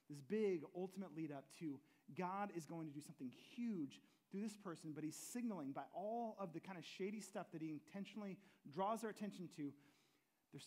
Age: 30-49